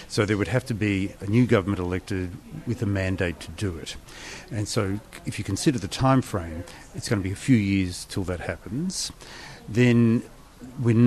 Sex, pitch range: male, 95-120 Hz